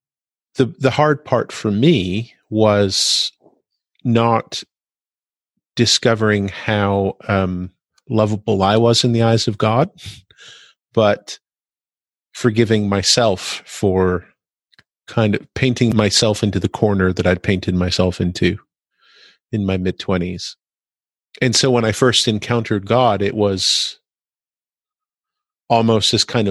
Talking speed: 115 wpm